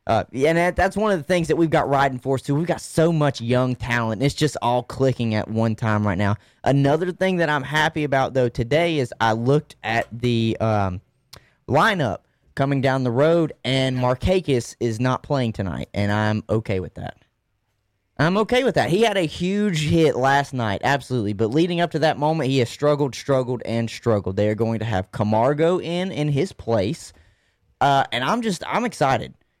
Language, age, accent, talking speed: English, 20-39, American, 200 wpm